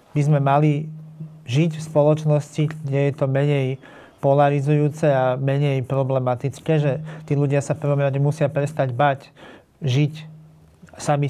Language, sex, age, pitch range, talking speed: Slovak, male, 40-59, 140-155 Hz, 125 wpm